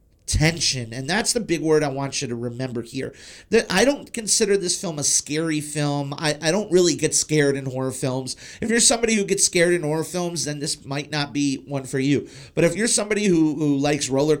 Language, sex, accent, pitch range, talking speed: English, male, American, 135-170 Hz, 230 wpm